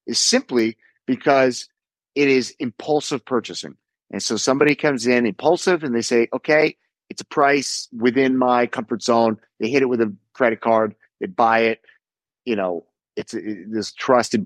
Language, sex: English, male